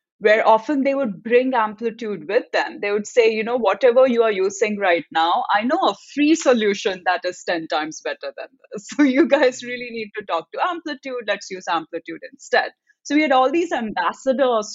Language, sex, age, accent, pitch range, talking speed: English, female, 30-49, Indian, 175-245 Hz, 205 wpm